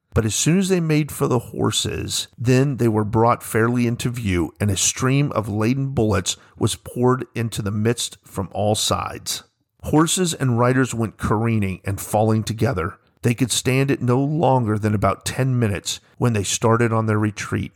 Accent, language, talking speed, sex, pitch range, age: American, English, 185 wpm, male, 100-130 Hz, 40-59